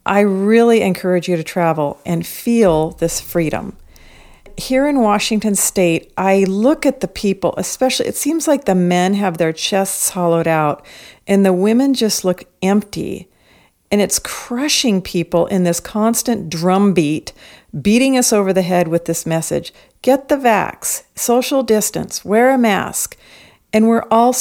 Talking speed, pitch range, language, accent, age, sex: 155 wpm, 180-230 Hz, English, American, 50-69, female